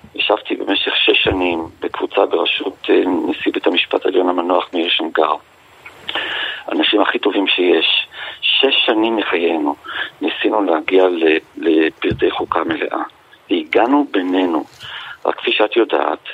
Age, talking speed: 40-59, 115 wpm